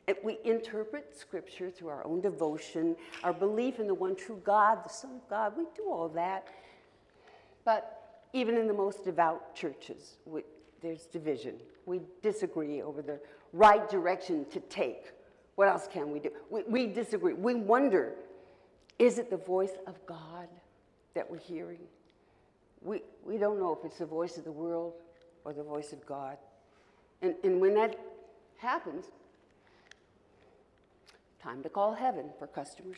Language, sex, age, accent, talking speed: English, female, 60-79, American, 160 wpm